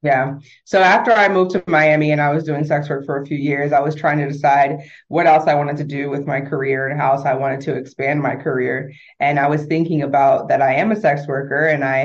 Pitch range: 140-155 Hz